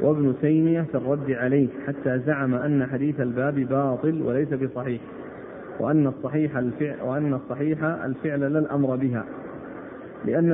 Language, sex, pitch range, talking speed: Arabic, male, 135-155 Hz, 125 wpm